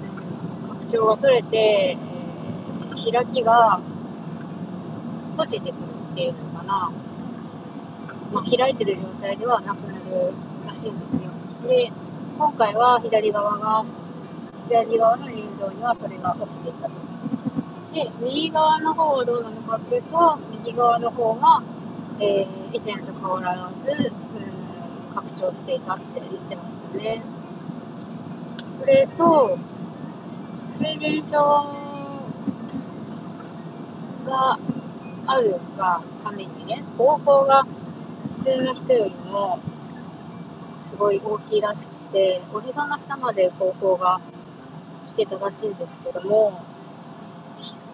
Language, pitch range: Japanese, 190-245 Hz